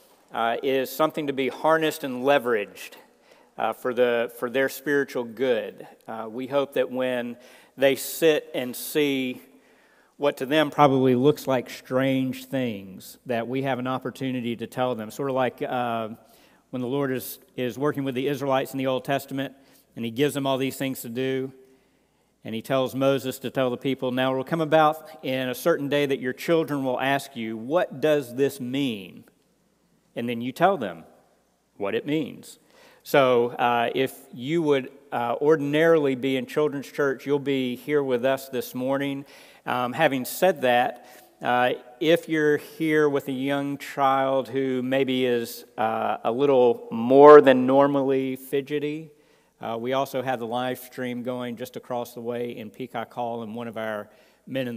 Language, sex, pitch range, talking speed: English, male, 125-140 Hz, 175 wpm